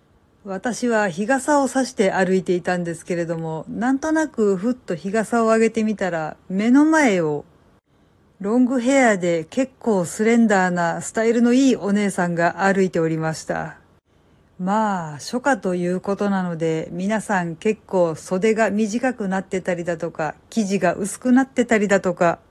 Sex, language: female, Japanese